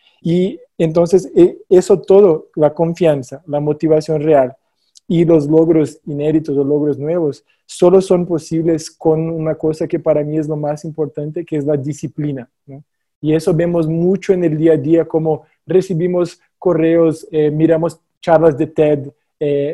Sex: male